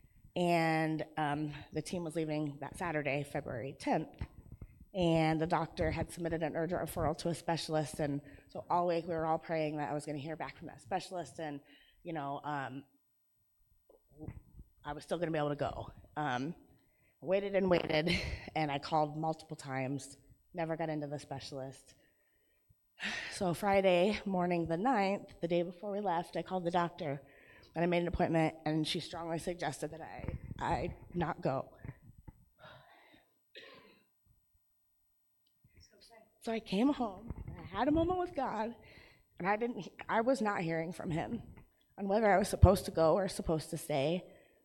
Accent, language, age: American, English, 30-49